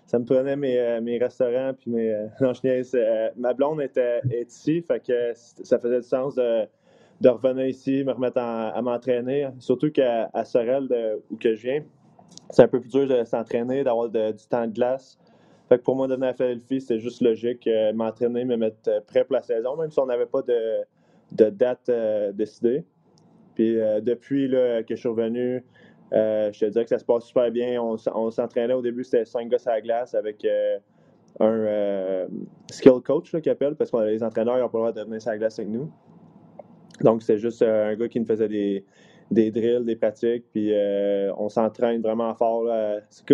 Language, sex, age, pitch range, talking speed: French, male, 20-39, 110-130 Hz, 215 wpm